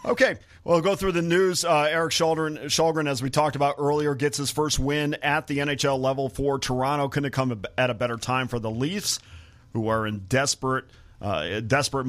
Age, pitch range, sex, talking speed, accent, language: 40-59, 110-135 Hz, male, 205 wpm, American, English